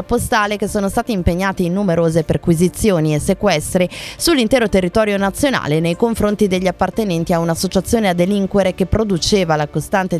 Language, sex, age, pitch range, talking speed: Italian, female, 20-39, 175-235 Hz, 145 wpm